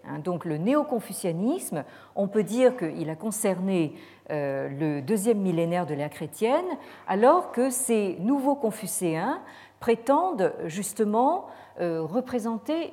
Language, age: French, 50-69